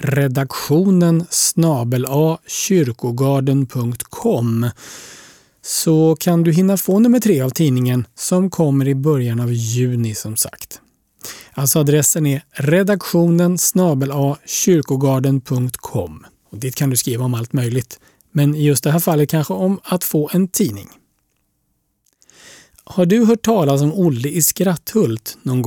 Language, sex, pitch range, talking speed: Swedish, male, 130-175 Hz, 130 wpm